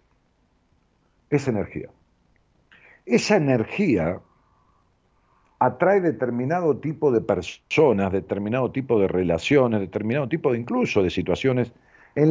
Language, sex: Spanish, male